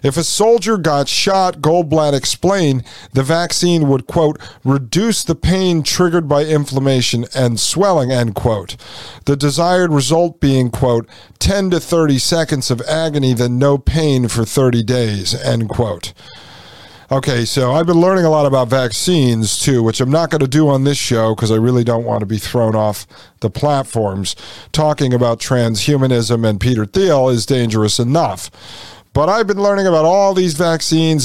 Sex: male